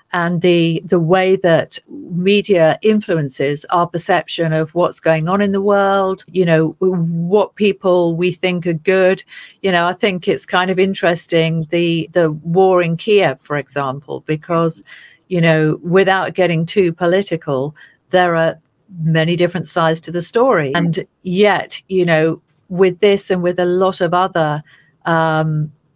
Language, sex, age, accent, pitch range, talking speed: English, female, 40-59, British, 155-185 Hz, 155 wpm